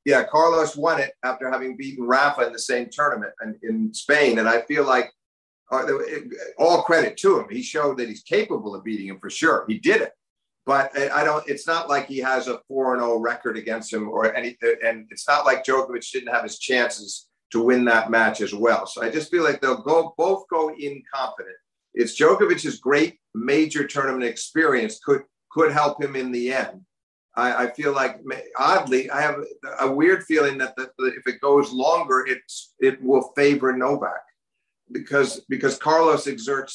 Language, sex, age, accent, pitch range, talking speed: English, male, 50-69, American, 125-155 Hz, 185 wpm